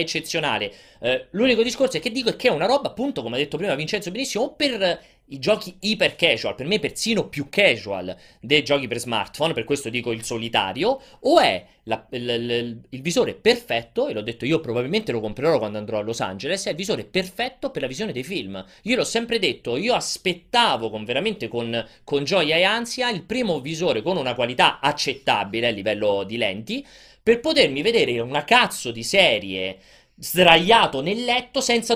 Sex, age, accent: male, 30-49, native